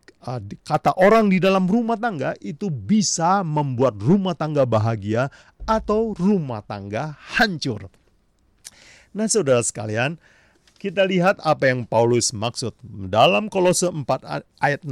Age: 40-59